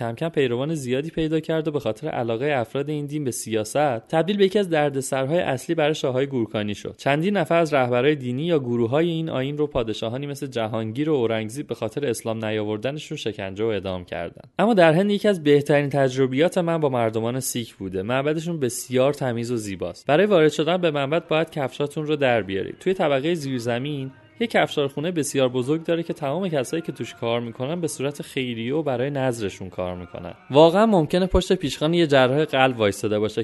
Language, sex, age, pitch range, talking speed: Persian, male, 30-49, 120-160 Hz, 195 wpm